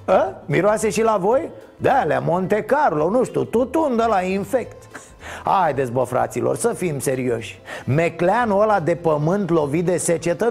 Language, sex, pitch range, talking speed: Romanian, male, 145-205 Hz, 155 wpm